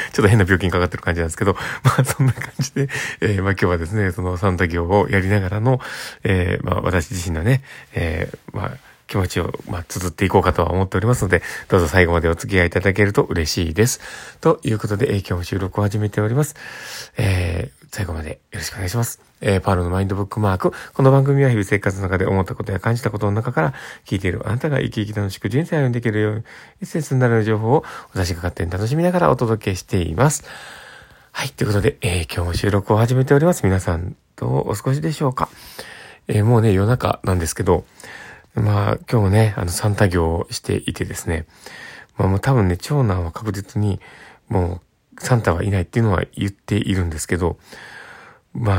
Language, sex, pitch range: Japanese, male, 95-120 Hz